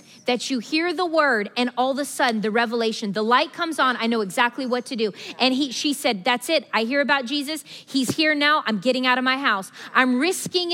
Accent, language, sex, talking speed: American, English, female, 240 wpm